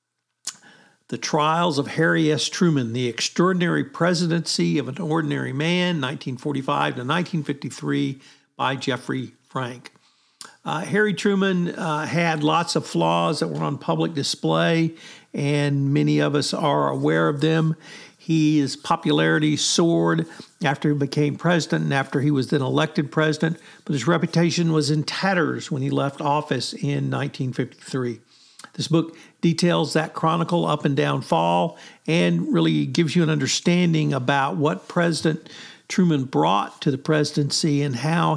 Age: 60-79